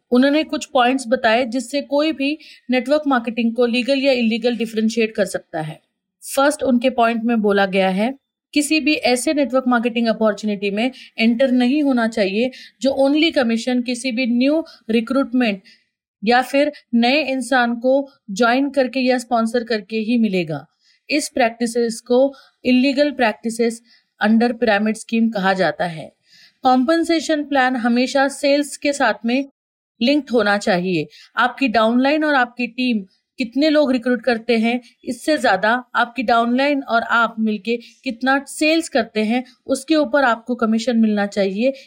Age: 30-49